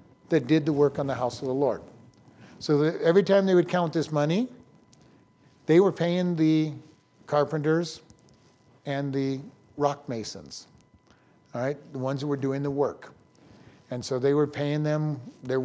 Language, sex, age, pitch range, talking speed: English, male, 50-69, 135-160 Hz, 170 wpm